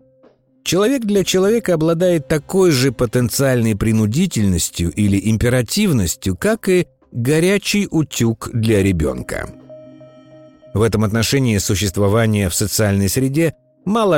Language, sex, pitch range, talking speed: Russian, male, 95-160 Hz, 100 wpm